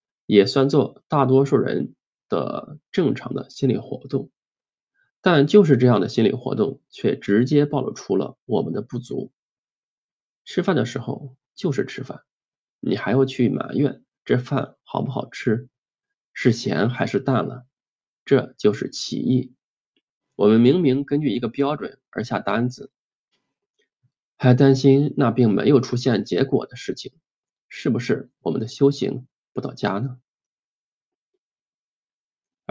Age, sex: 20-39, male